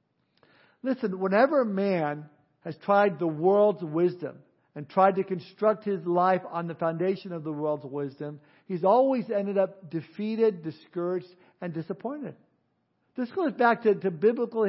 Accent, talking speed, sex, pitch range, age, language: American, 145 wpm, male, 185-220 Hz, 60-79, English